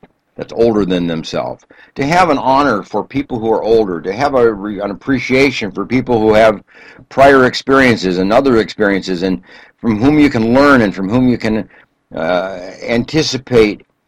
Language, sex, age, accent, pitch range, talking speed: English, male, 60-79, American, 100-135 Hz, 165 wpm